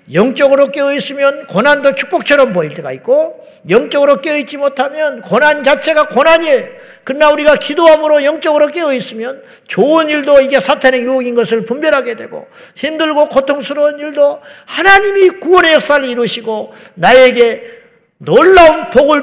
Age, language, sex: 50-69, Korean, male